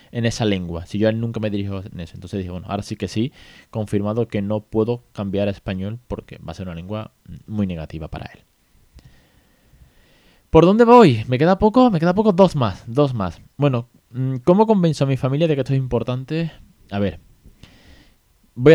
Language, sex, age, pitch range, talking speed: Spanish, male, 20-39, 95-130 Hz, 200 wpm